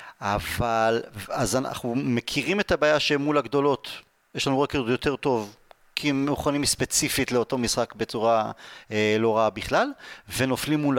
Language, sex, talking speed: Hebrew, male, 140 wpm